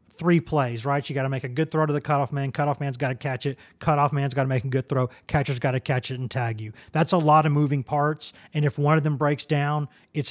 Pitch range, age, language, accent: 135-160 Hz, 30-49, English, American